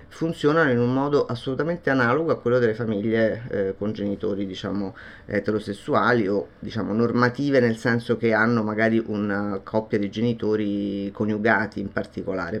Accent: native